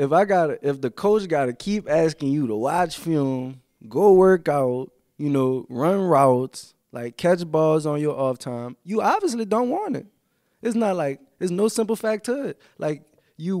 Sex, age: male, 20-39